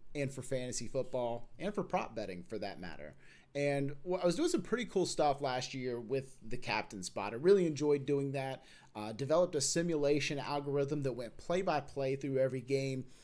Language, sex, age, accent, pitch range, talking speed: English, male, 30-49, American, 130-165 Hz, 195 wpm